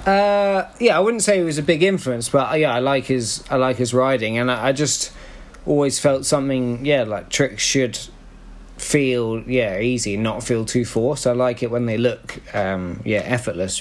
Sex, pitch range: male, 115-150 Hz